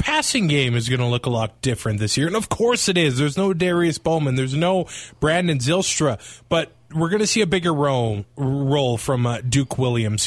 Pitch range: 125-195 Hz